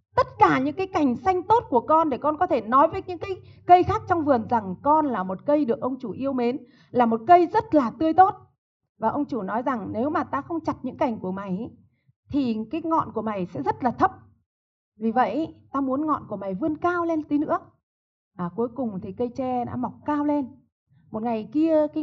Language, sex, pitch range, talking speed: Vietnamese, female, 210-305 Hz, 235 wpm